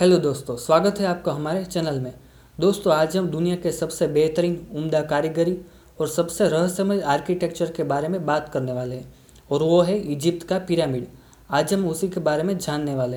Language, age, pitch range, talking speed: Hindi, 20-39, 150-180 Hz, 190 wpm